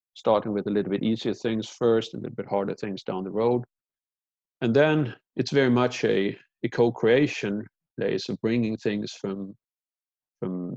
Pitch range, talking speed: 95-120 Hz, 180 wpm